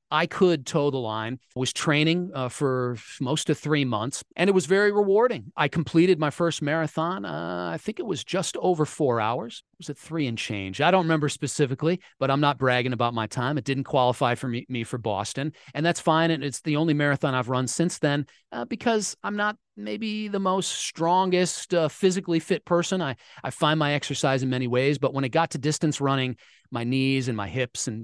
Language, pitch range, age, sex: English, 130-175 Hz, 40-59, male